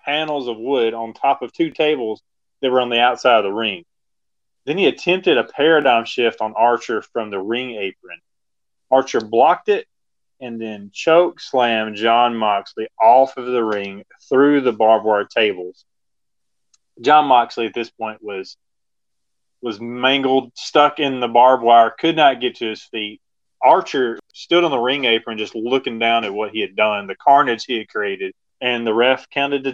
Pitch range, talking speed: 105-135 Hz, 180 wpm